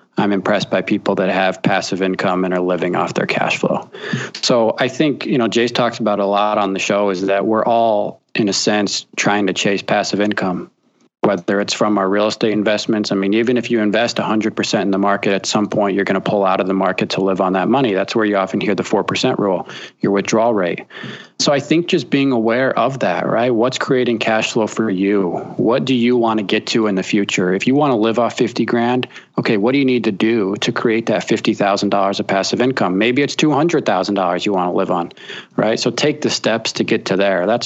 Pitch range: 100-115 Hz